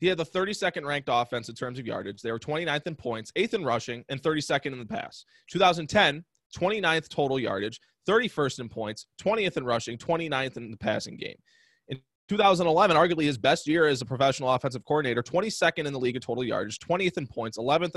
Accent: American